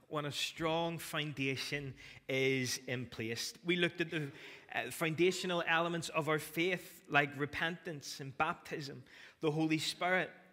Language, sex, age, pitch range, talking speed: English, male, 20-39, 135-165 Hz, 130 wpm